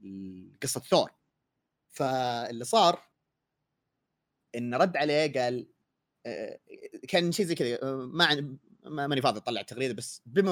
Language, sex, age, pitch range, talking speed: Arabic, male, 30-49, 120-170 Hz, 110 wpm